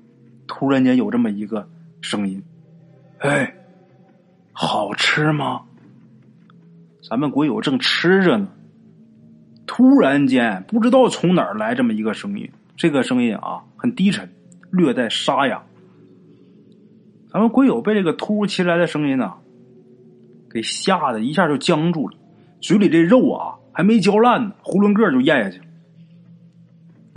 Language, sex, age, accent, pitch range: Chinese, male, 30-49, native, 145-240 Hz